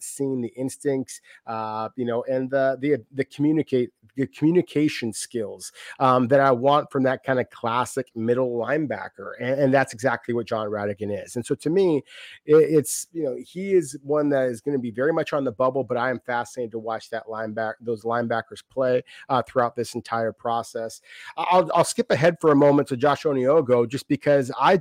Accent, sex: American, male